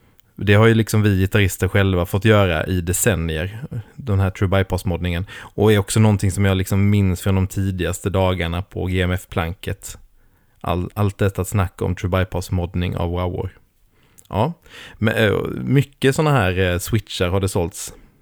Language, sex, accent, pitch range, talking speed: Swedish, male, native, 95-115 Hz, 150 wpm